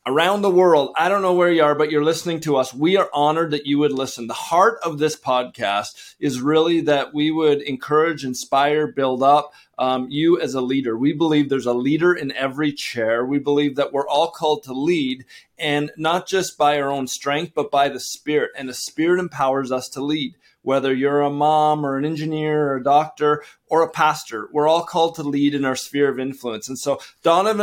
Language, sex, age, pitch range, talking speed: English, male, 30-49, 135-155 Hz, 215 wpm